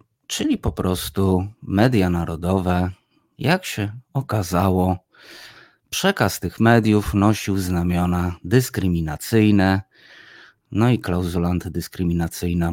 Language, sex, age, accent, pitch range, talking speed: Polish, male, 30-49, native, 90-125 Hz, 85 wpm